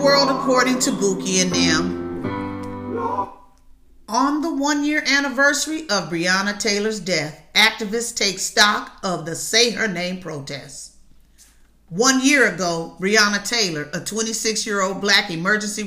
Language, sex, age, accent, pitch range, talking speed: English, female, 40-59, American, 180-245 Hz, 120 wpm